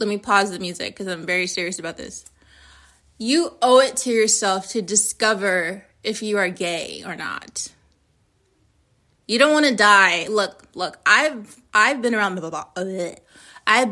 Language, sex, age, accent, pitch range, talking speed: English, female, 20-39, American, 180-245 Hz, 165 wpm